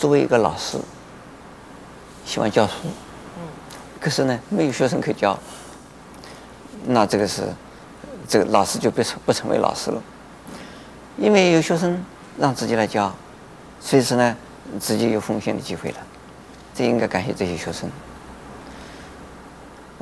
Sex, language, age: male, Chinese, 50-69